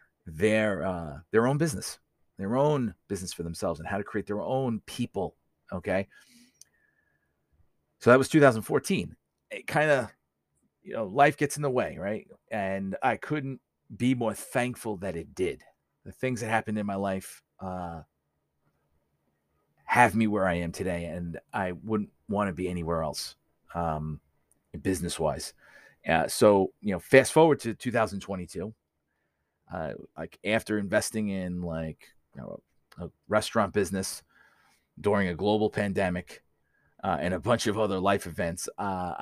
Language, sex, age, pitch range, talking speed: English, male, 30-49, 90-110 Hz, 150 wpm